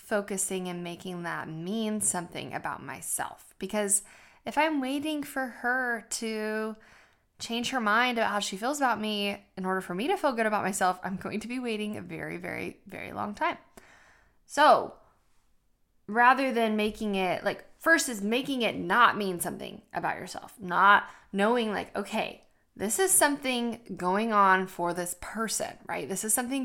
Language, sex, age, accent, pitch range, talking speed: English, female, 20-39, American, 185-235 Hz, 170 wpm